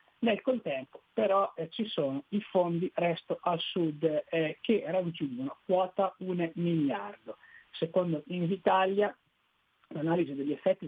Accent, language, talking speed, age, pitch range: native, Italian, 120 wpm, 40-59, 160-200 Hz